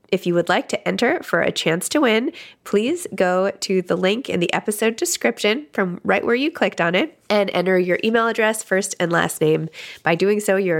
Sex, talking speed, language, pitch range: female, 220 wpm, English, 175-220 Hz